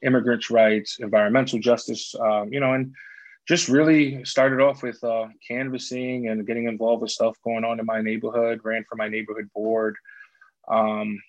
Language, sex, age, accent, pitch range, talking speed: English, male, 20-39, American, 110-120 Hz, 165 wpm